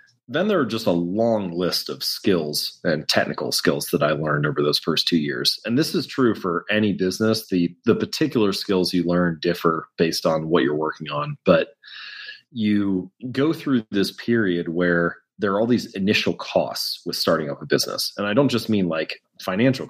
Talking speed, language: 195 wpm, English